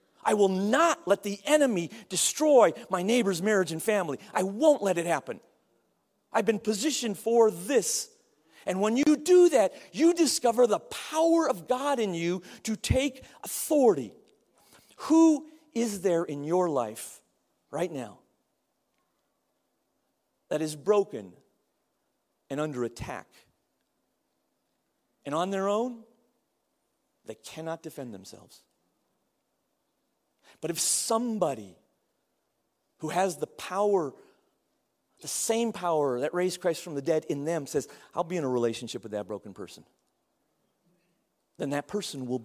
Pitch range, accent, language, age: 150-225 Hz, American, English, 40-59